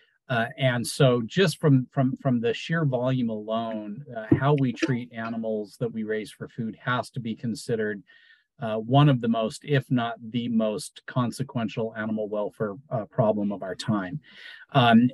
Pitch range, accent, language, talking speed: 115-140 Hz, American, English, 165 wpm